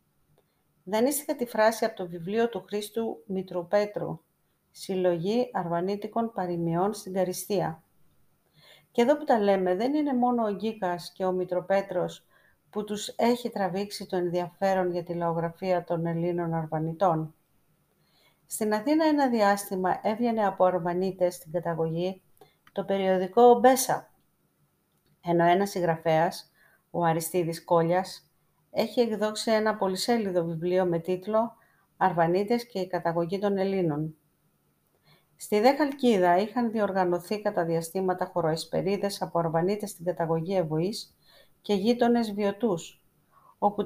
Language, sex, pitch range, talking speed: Greek, female, 175-225 Hz, 120 wpm